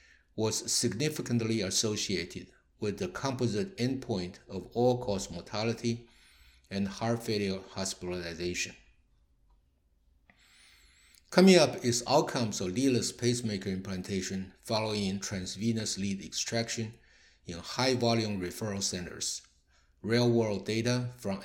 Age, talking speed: 50-69, 90 wpm